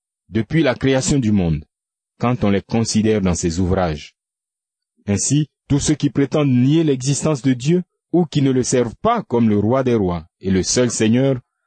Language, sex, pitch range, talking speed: French, male, 105-140 Hz, 185 wpm